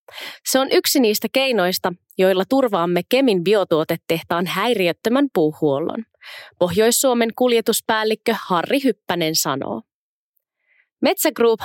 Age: 20-39